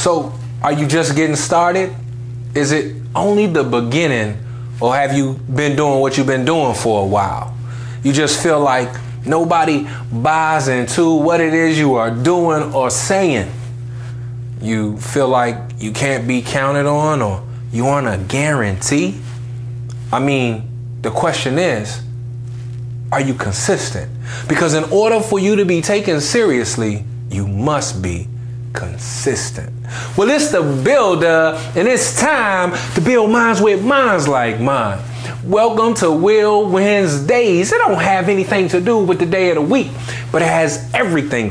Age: 20-39